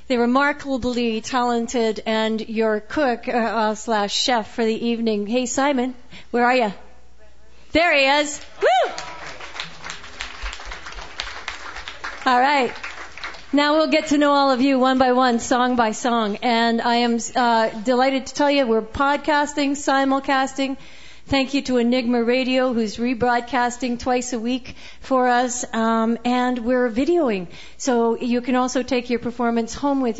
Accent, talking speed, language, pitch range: American, 145 wpm, English, 225-265 Hz